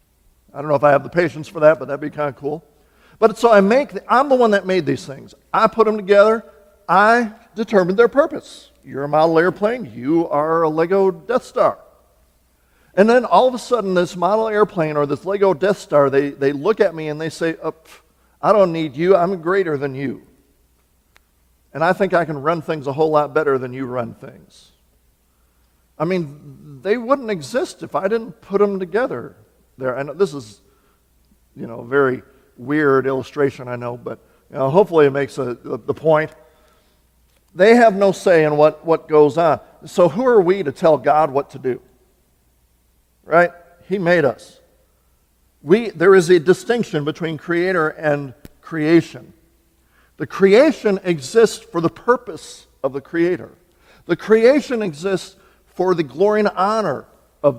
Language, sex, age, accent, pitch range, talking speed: English, male, 50-69, American, 135-195 Hz, 180 wpm